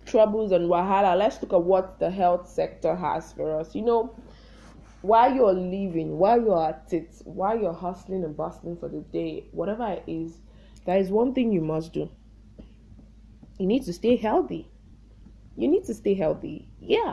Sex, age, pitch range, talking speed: female, 20-39, 165-215 Hz, 180 wpm